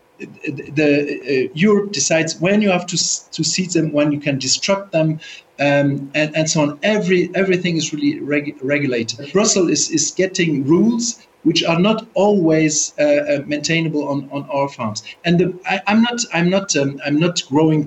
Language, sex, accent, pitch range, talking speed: English, male, German, 150-195 Hz, 180 wpm